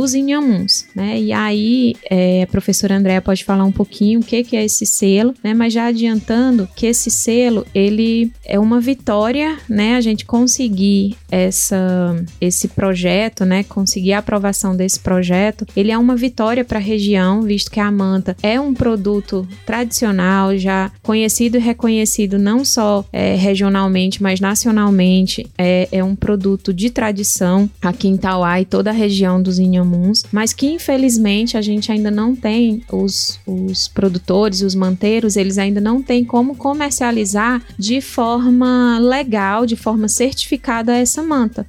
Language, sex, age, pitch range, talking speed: Portuguese, female, 20-39, 195-240 Hz, 160 wpm